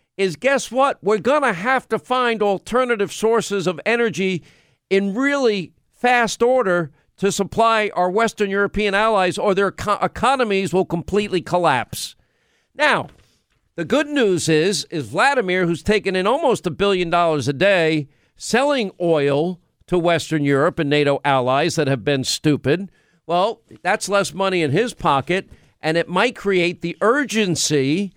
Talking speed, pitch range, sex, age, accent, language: 150 wpm, 150-200 Hz, male, 50-69, American, English